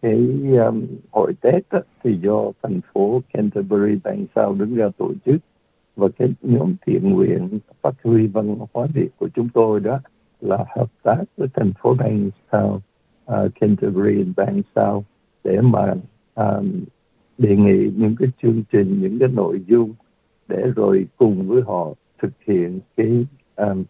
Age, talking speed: 60-79, 160 wpm